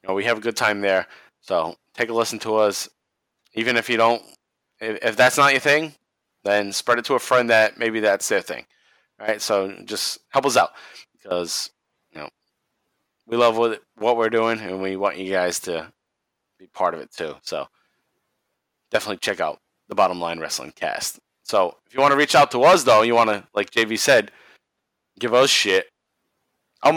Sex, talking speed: male, 200 wpm